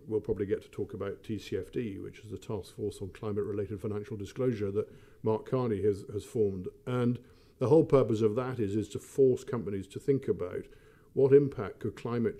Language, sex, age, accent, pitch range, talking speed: English, male, 50-69, British, 105-130 Hz, 195 wpm